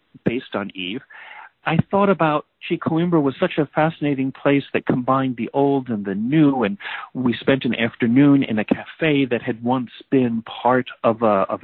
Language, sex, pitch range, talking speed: English, male, 125-160 Hz, 185 wpm